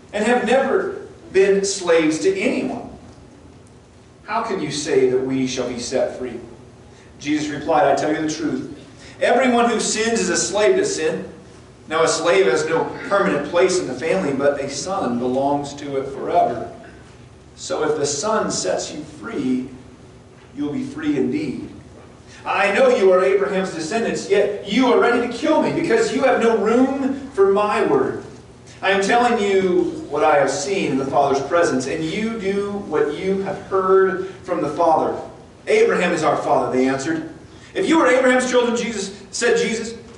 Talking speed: 175 wpm